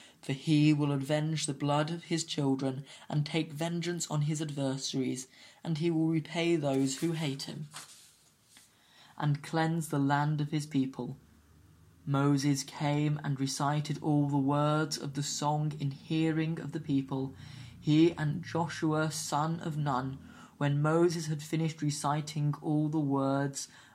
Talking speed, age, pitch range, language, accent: 150 wpm, 20-39, 140-155 Hz, English, British